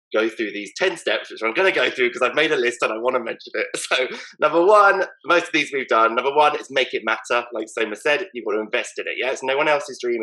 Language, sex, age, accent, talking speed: English, male, 20-39, British, 305 wpm